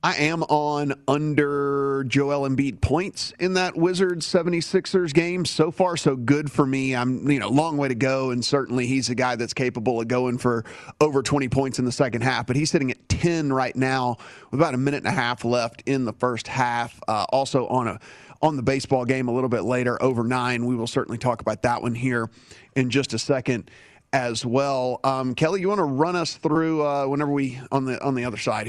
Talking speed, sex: 220 wpm, male